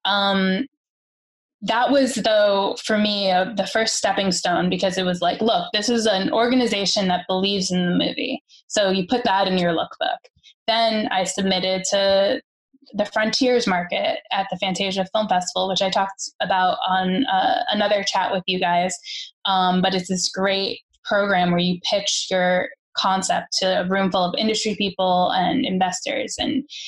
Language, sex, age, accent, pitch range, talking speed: English, female, 10-29, American, 190-235 Hz, 170 wpm